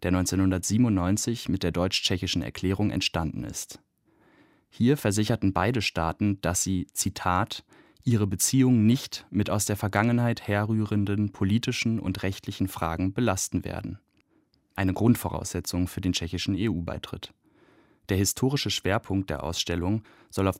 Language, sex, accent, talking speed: German, male, German, 120 wpm